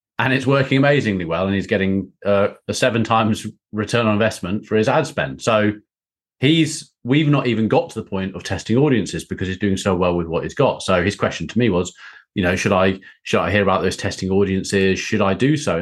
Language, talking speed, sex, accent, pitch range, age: English, 230 wpm, male, British, 95-130 Hz, 30-49